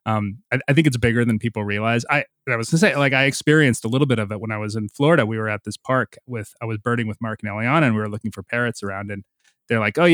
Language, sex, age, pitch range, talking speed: English, male, 20-39, 110-140 Hz, 310 wpm